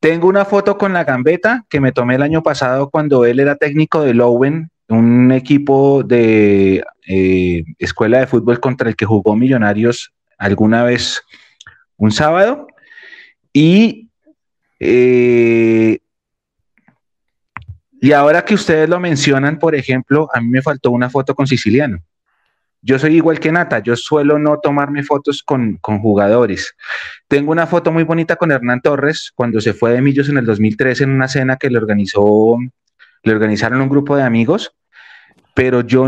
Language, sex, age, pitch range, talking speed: Spanish, male, 30-49, 115-145 Hz, 160 wpm